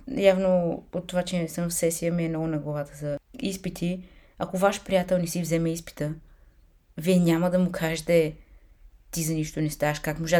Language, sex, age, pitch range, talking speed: Bulgarian, female, 20-39, 150-190 Hz, 190 wpm